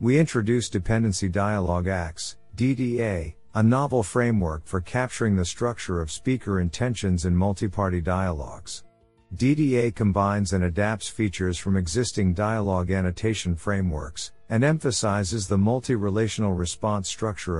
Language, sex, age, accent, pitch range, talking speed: English, male, 50-69, American, 90-115 Hz, 120 wpm